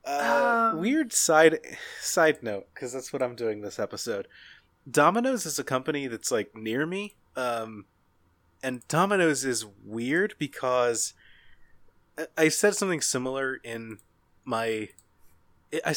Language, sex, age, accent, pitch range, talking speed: English, male, 20-39, American, 110-140 Hz, 130 wpm